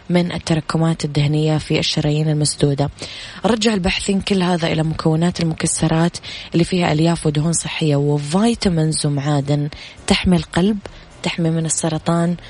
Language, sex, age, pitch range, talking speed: Arabic, female, 20-39, 145-175 Hz, 120 wpm